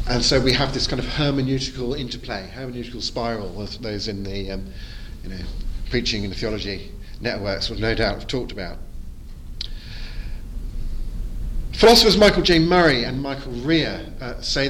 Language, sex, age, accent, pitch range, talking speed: English, male, 40-59, British, 110-175 Hz, 155 wpm